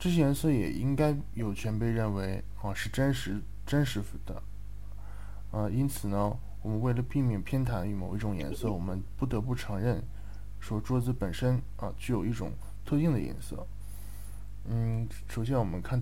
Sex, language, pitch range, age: male, Japanese, 100-120 Hz, 20-39